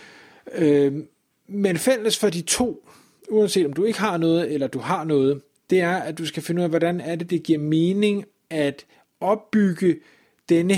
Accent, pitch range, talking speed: native, 155-195 Hz, 180 wpm